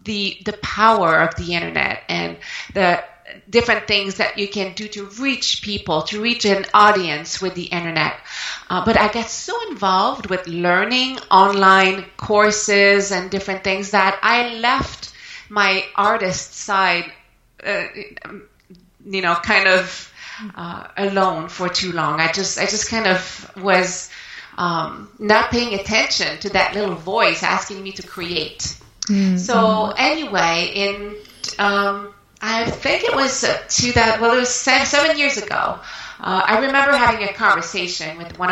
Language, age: English, 30-49